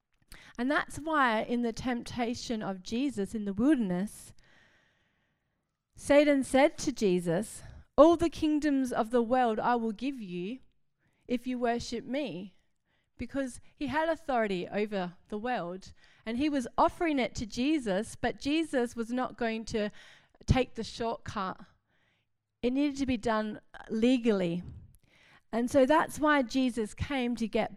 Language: English